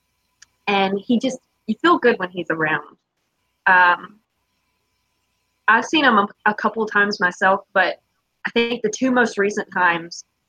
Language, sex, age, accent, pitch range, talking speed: English, female, 20-39, American, 180-235 Hz, 150 wpm